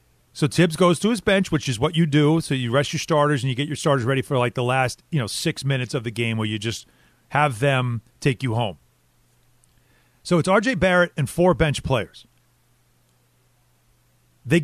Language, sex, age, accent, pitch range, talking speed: English, male, 40-59, American, 125-175 Hz, 205 wpm